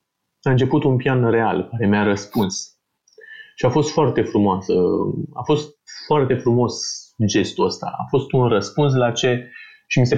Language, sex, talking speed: Romanian, male, 165 wpm